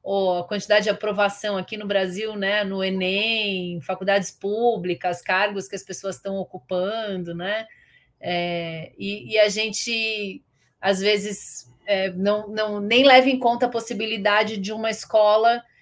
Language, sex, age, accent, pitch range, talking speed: Portuguese, female, 30-49, Brazilian, 190-230 Hz, 150 wpm